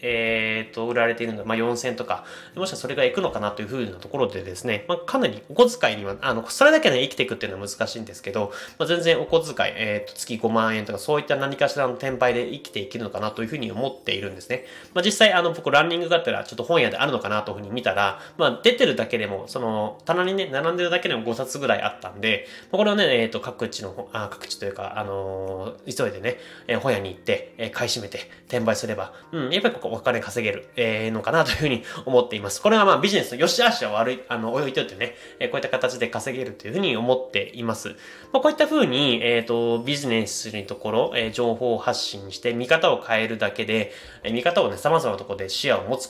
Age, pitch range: 20-39, 110-170 Hz